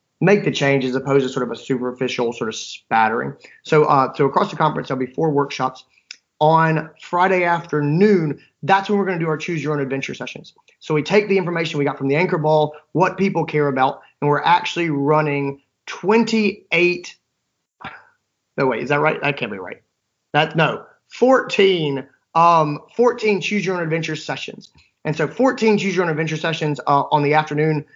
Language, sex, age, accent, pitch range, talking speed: English, male, 30-49, American, 145-180 Hz, 190 wpm